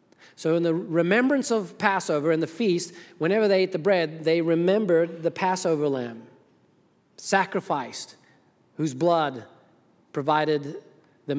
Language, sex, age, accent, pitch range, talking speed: English, male, 40-59, American, 160-220 Hz, 125 wpm